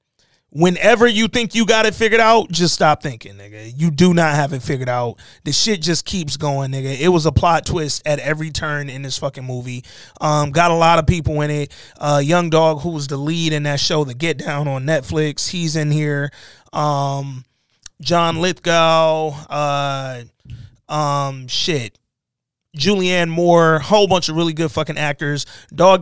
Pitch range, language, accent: 140-170 Hz, English, American